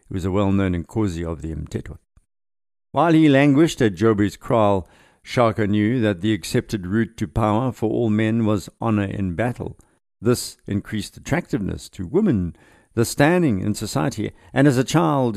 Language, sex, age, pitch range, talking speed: English, male, 60-79, 95-120 Hz, 160 wpm